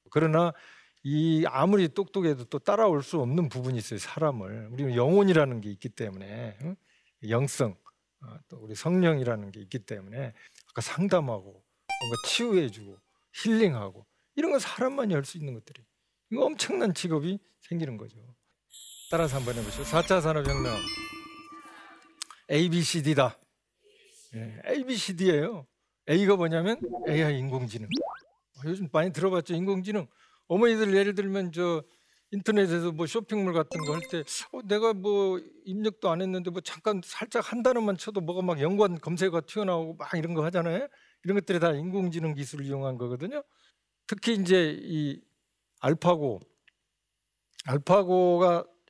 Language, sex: Korean, male